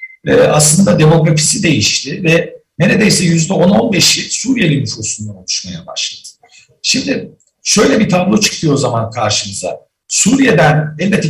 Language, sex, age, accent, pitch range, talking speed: Turkish, male, 60-79, native, 140-190 Hz, 110 wpm